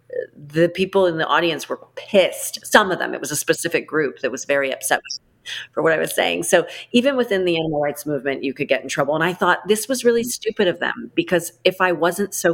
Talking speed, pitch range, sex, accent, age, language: 245 wpm, 160-225 Hz, female, American, 40-59, English